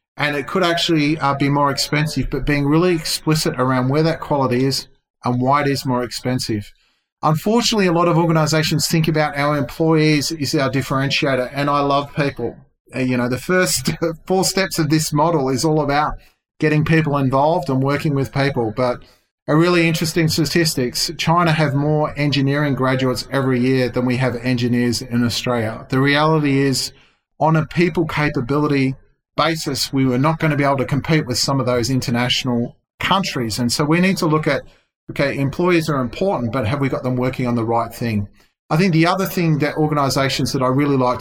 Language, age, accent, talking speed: English, 30-49, Australian, 190 wpm